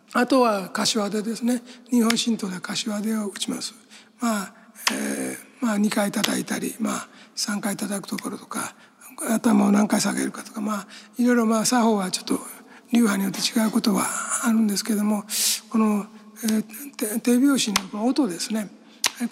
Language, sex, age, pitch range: Japanese, male, 60-79, 210-240 Hz